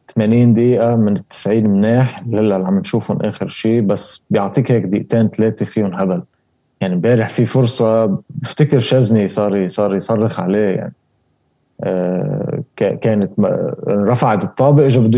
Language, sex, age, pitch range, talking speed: Arabic, male, 20-39, 105-140 Hz, 140 wpm